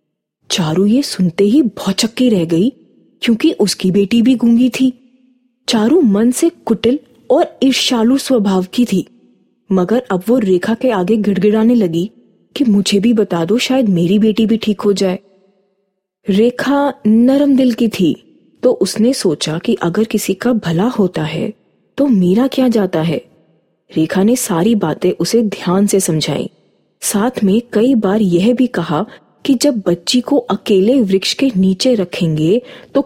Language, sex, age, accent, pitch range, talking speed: Tamil, female, 20-39, native, 180-240 Hz, 160 wpm